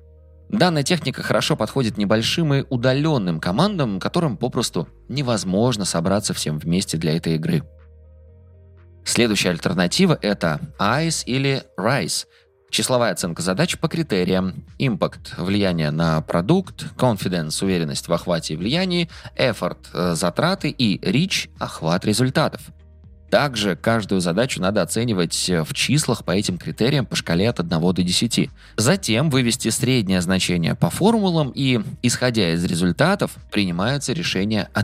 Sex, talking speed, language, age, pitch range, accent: male, 135 wpm, Russian, 20-39, 85-125 Hz, native